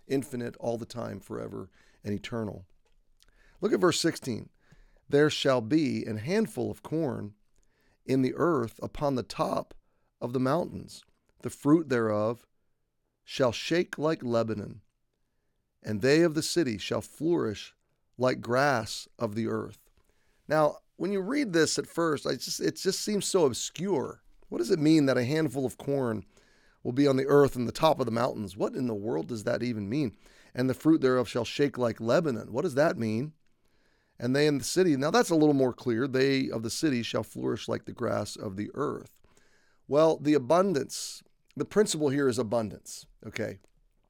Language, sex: English, male